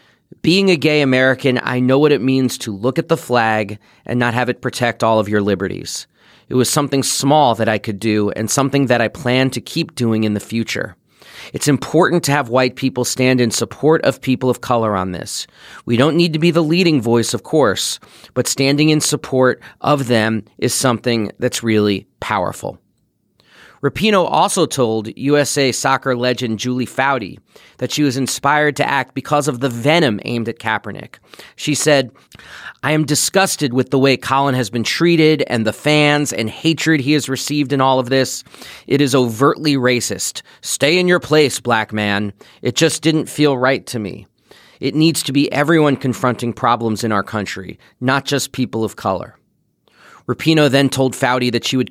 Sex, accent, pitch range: male, American, 115-145 Hz